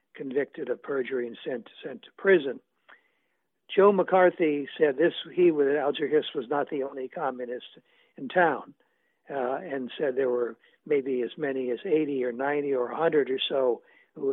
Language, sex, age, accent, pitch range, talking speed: English, male, 60-79, American, 130-220 Hz, 170 wpm